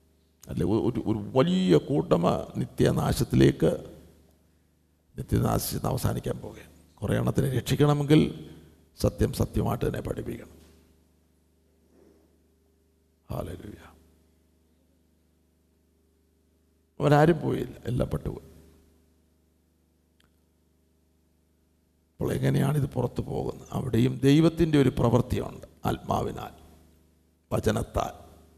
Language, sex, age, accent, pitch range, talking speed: Malayalam, male, 50-69, native, 80-110 Hz, 65 wpm